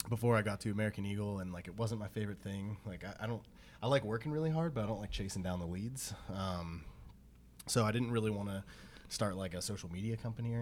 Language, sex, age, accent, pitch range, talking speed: English, male, 20-39, American, 80-105 Hz, 250 wpm